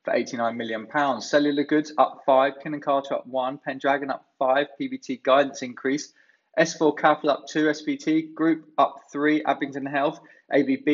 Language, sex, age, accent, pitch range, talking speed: English, male, 20-39, British, 135-160 Hz, 165 wpm